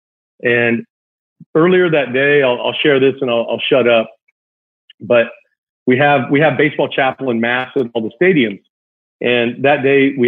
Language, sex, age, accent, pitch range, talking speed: English, male, 40-59, American, 125-150 Hz, 175 wpm